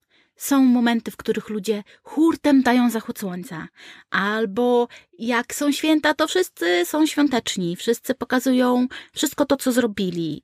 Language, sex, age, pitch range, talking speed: Polish, female, 20-39, 230-285 Hz, 130 wpm